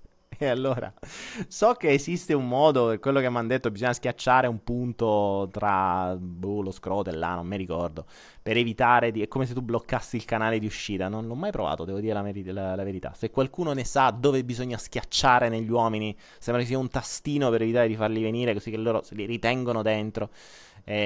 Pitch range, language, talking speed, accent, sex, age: 95-125 Hz, Italian, 210 wpm, native, male, 20-39